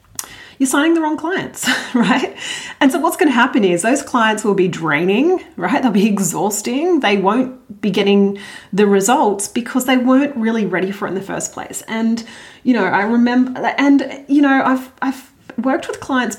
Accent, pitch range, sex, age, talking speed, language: Australian, 205-260 Hz, female, 30-49, 185 wpm, English